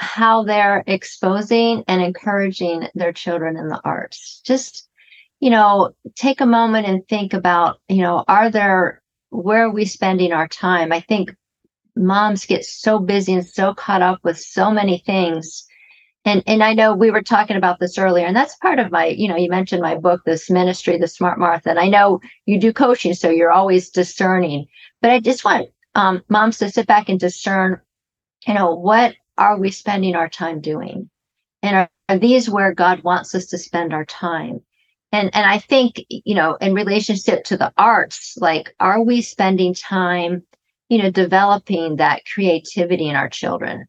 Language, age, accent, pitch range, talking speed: English, 40-59, American, 175-215 Hz, 185 wpm